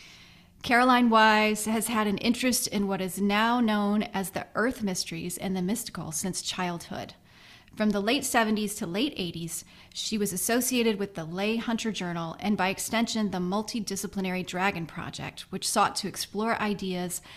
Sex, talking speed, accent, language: female, 160 wpm, American, English